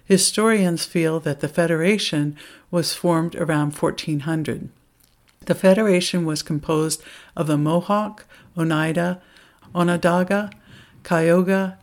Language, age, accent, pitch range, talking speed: English, 60-79, American, 150-185 Hz, 95 wpm